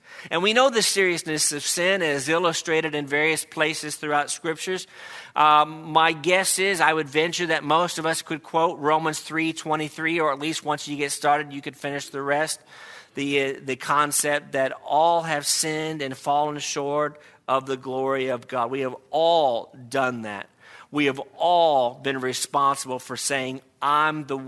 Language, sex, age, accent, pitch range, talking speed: English, male, 50-69, American, 140-165 Hz, 180 wpm